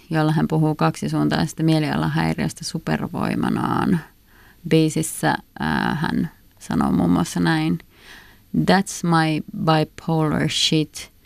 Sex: female